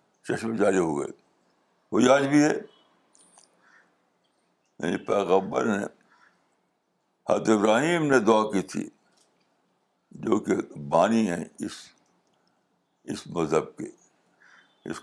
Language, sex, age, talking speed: Urdu, male, 60-79, 100 wpm